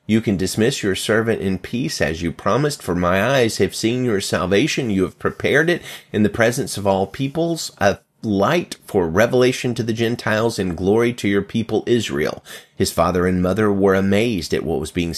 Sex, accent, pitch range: male, American, 95-125 Hz